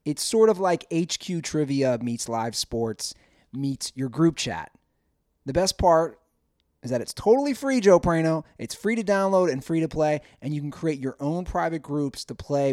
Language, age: English, 30-49